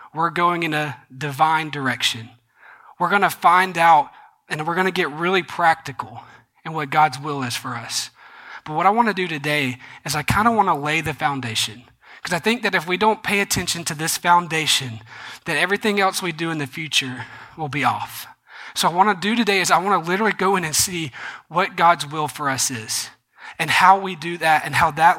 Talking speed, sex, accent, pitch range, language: 215 wpm, male, American, 140-185 Hz, English